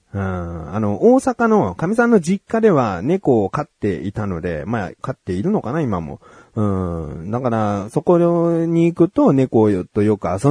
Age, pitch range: 30-49, 100-140 Hz